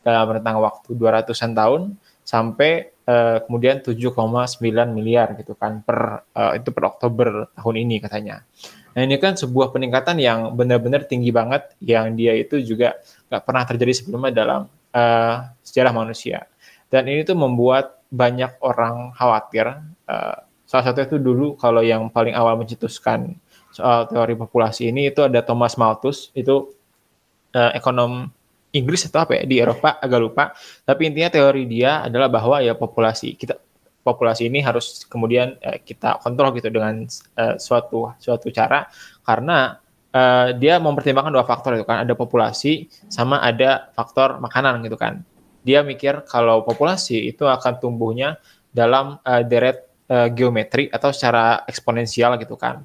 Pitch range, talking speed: 115-135 Hz, 150 wpm